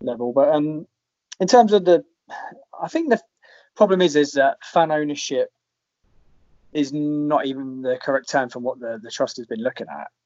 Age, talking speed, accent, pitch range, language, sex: 20-39, 180 wpm, British, 120-155 Hz, English, male